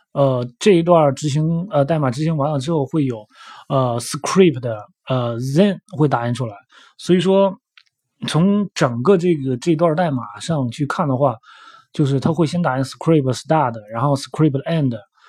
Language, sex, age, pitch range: Chinese, male, 20-39, 130-165 Hz